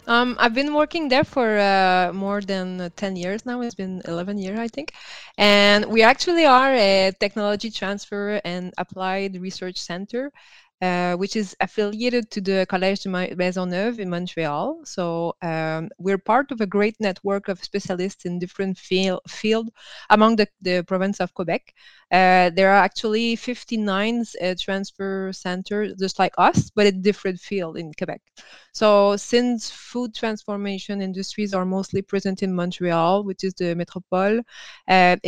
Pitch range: 185-210 Hz